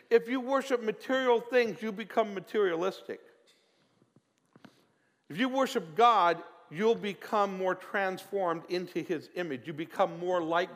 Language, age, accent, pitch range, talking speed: English, 50-69, American, 170-225 Hz, 130 wpm